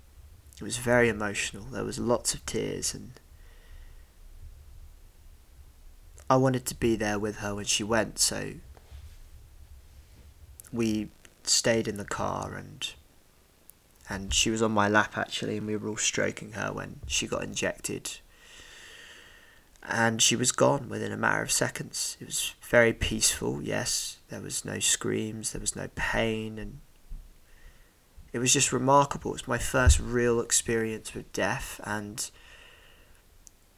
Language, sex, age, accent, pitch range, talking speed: English, male, 20-39, British, 80-115 Hz, 140 wpm